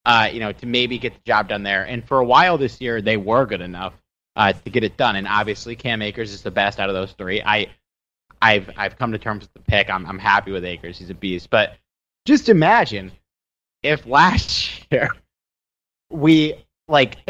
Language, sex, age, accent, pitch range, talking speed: English, male, 30-49, American, 100-165 Hz, 210 wpm